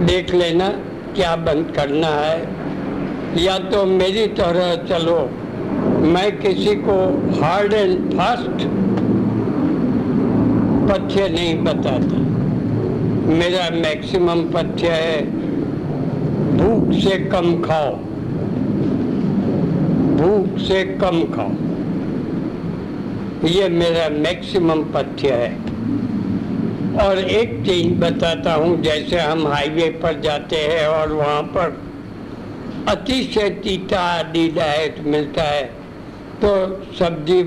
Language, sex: Hindi, male